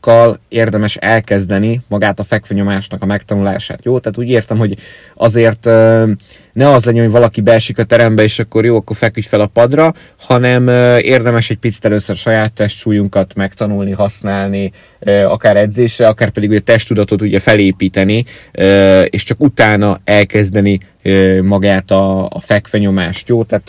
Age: 30-49